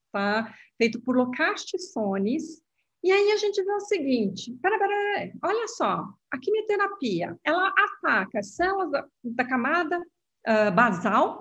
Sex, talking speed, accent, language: female, 115 wpm, Brazilian, Portuguese